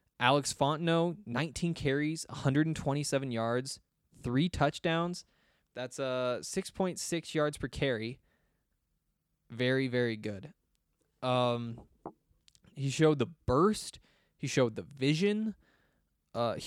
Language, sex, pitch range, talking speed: English, male, 120-160 Hz, 95 wpm